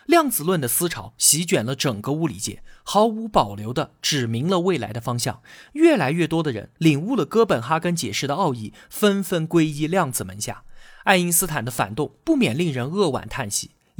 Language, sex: Chinese, male